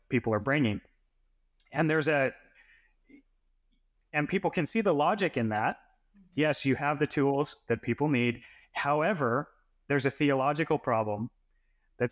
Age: 30-49